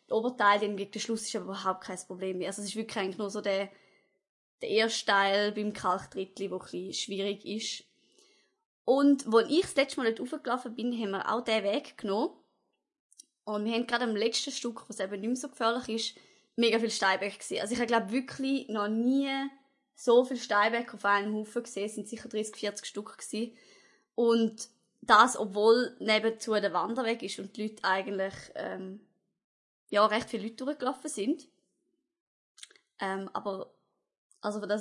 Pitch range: 200-250 Hz